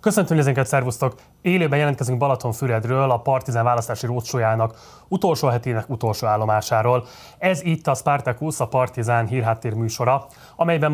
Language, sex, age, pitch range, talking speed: Hungarian, male, 30-49, 120-145 Hz, 130 wpm